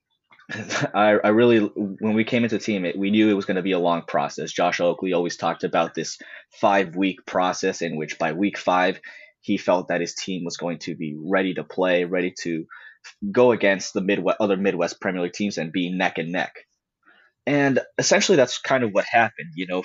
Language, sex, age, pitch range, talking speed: English, male, 20-39, 90-105 Hz, 210 wpm